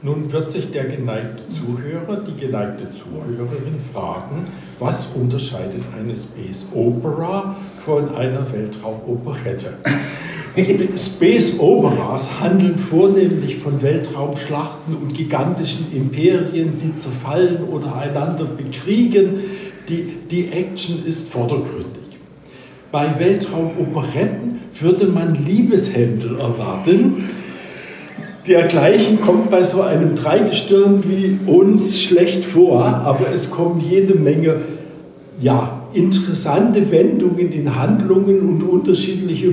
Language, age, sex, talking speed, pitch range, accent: German, 60-79, male, 95 wpm, 145-185 Hz, German